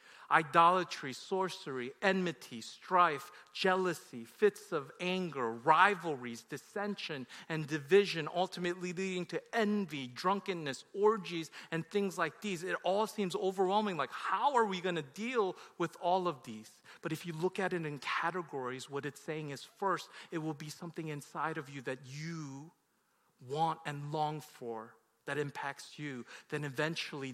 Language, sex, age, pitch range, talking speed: English, male, 40-59, 135-175 Hz, 150 wpm